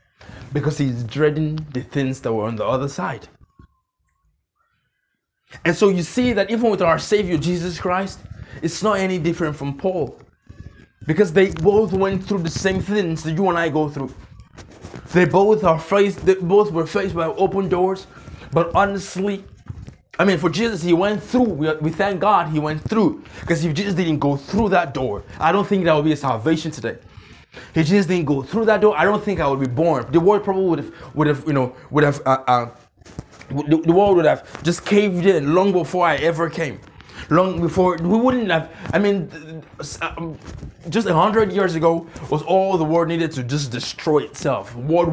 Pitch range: 150-190 Hz